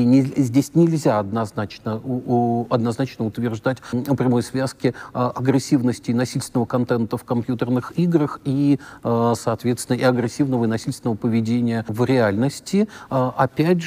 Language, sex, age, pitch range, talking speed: Russian, male, 40-59, 120-145 Hz, 120 wpm